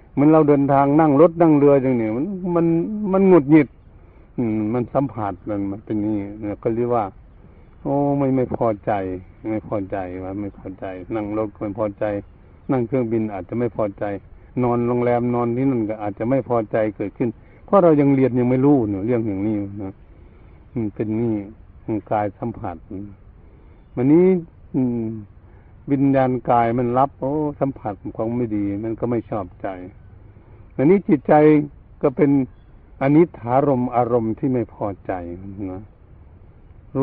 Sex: male